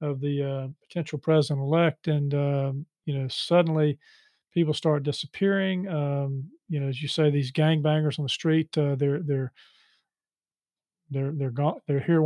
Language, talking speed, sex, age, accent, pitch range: English, 165 wpm, male, 40-59, American, 145-170 Hz